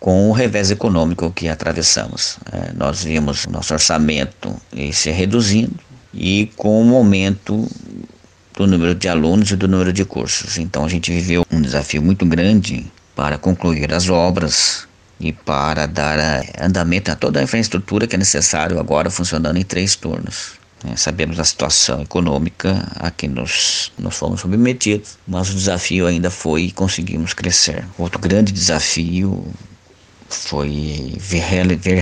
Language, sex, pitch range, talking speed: Portuguese, male, 80-95 Hz, 145 wpm